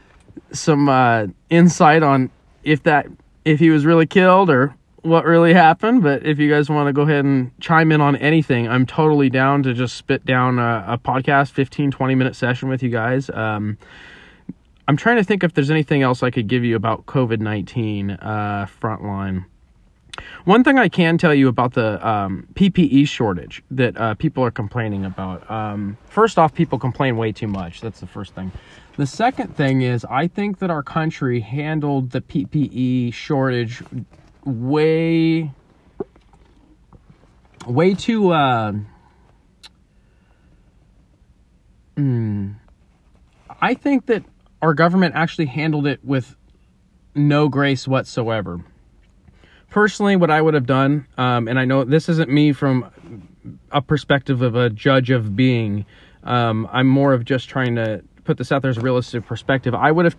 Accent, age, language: American, 20-39, English